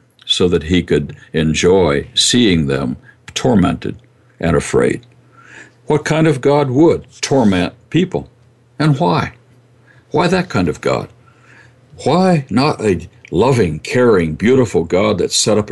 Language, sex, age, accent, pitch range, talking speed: English, male, 60-79, American, 105-135 Hz, 130 wpm